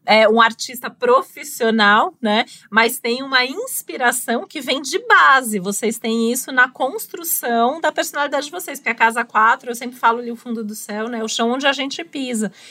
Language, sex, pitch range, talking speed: Portuguese, female, 220-255 Hz, 190 wpm